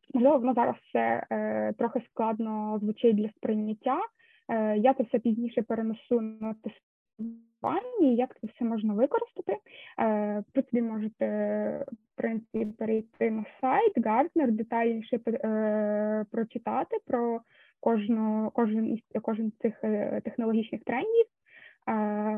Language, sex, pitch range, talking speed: Ukrainian, female, 215-250 Hz, 120 wpm